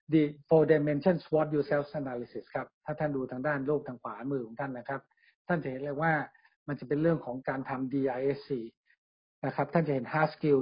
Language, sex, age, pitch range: Thai, male, 60-79, 140-160 Hz